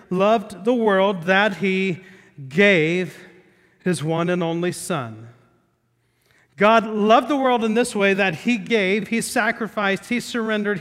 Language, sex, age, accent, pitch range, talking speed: English, male, 40-59, American, 155-210 Hz, 140 wpm